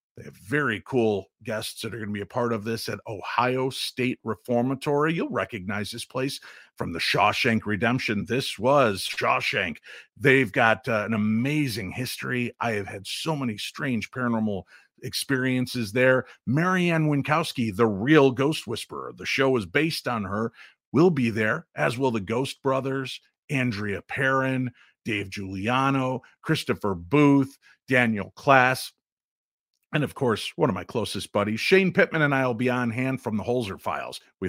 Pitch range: 110-135 Hz